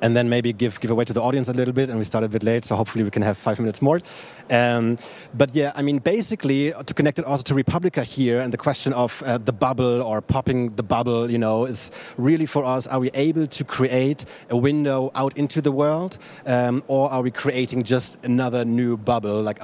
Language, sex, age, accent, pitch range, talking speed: German, male, 30-49, German, 115-135 Hz, 235 wpm